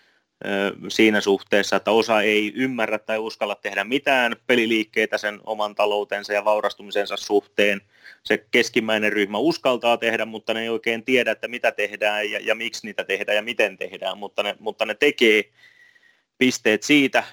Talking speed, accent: 155 wpm, native